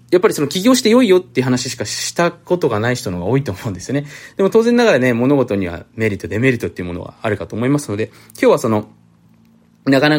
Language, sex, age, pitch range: Japanese, male, 20-39, 100-150 Hz